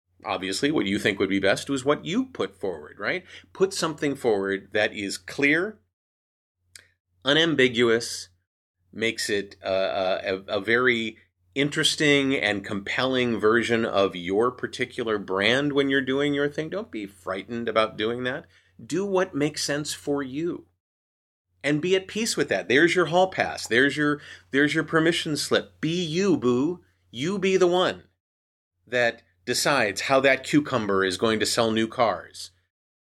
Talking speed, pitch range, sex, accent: 155 wpm, 95-140 Hz, male, American